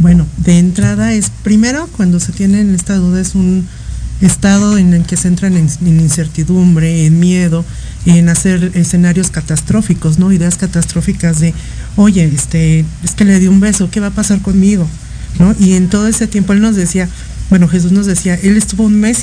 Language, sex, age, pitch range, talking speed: Spanish, male, 50-69, 165-195 Hz, 195 wpm